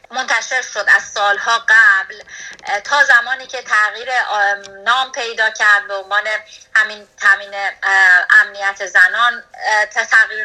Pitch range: 220-275 Hz